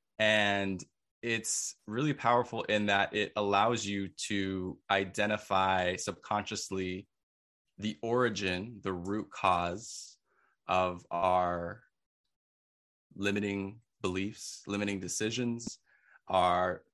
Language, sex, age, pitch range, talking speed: English, male, 20-39, 100-120 Hz, 85 wpm